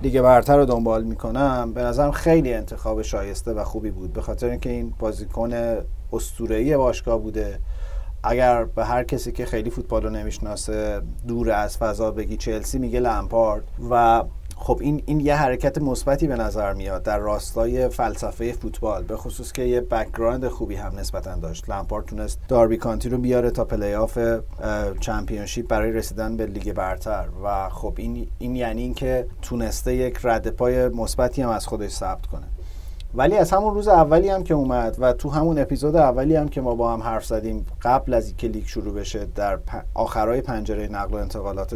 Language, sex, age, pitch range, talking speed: Persian, male, 30-49, 110-145 Hz, 175 wpm